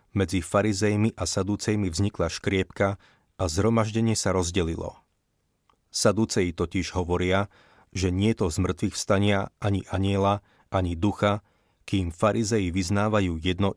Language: Slovak